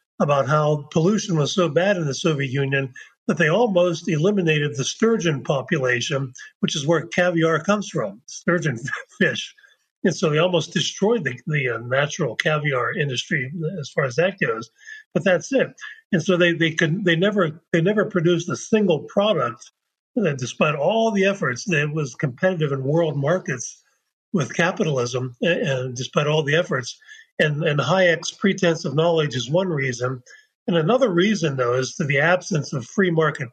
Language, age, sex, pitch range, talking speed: English, 50-69, male, 140-185 Hz, 170 wpm